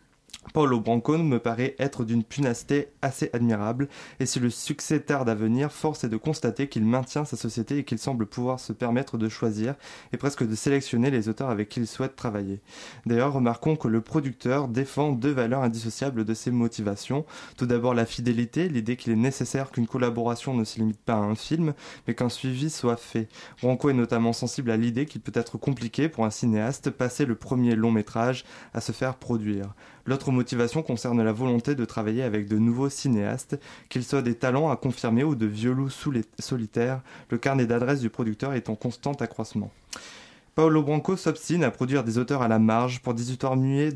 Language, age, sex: French, 20-39, male